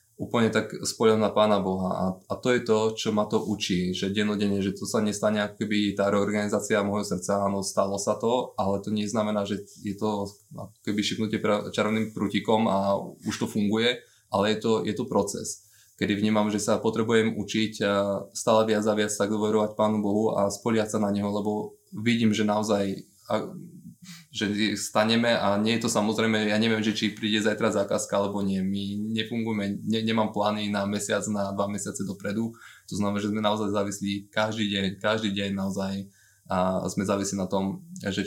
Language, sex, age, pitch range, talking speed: Slovak, male, 20-39, 100-110 Hz, 185 wpm